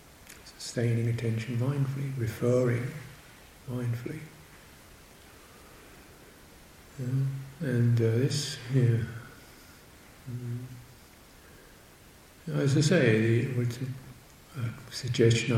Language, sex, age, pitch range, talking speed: English, male, 50-69, 115-140 Hz, 70 wpm